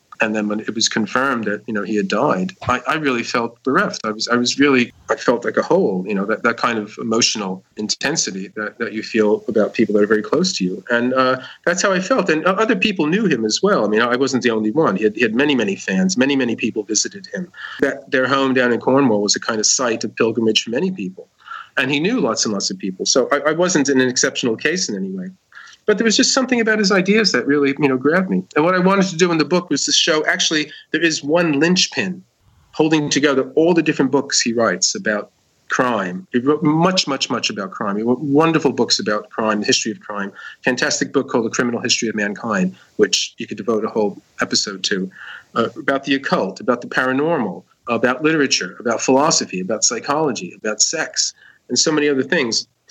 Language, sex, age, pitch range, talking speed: English, male, 40-59, 110-160 Hz, 235 wpm